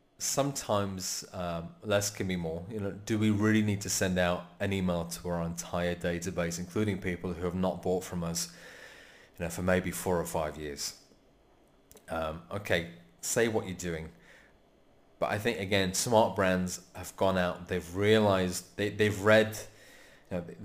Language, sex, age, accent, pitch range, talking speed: English, male, 30-49, British, 90-105 Hz, 175 wpm